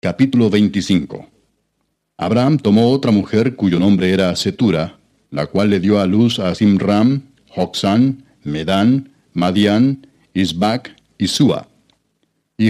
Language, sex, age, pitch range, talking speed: Spanish, male, 60-79, 100-125 Hz, 125 wpm